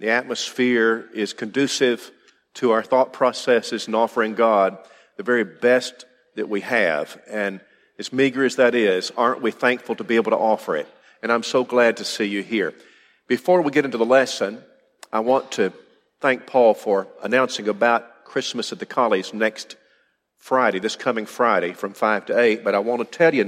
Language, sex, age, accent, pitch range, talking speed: English, male, 50-69, American, 105-125 Hz, 185 wpm